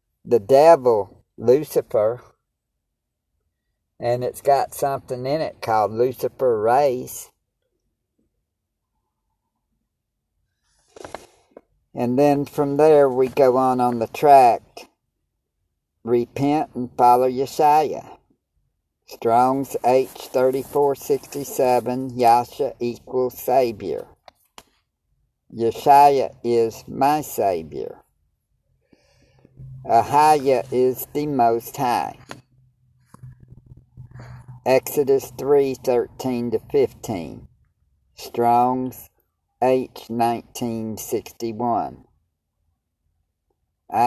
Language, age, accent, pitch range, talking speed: English, 50-69, American, 120-135 Hz, 65 wpm